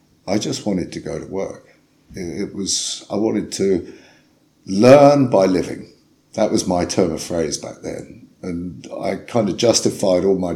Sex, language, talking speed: male, English, 170 wpm